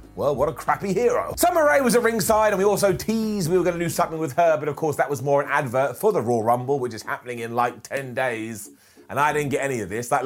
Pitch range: 140-190 Hz